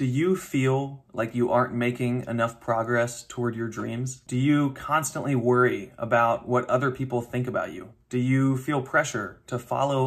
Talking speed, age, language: 175 wpm, 20-39, English